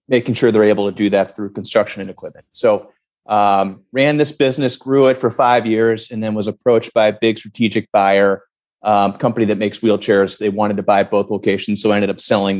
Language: English